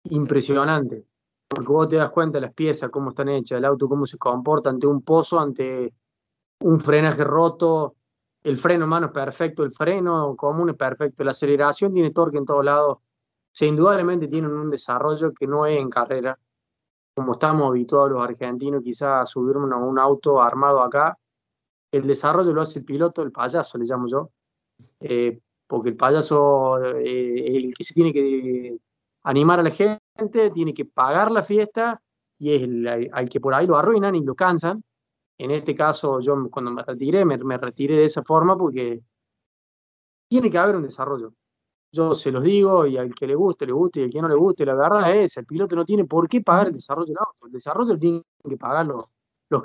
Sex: male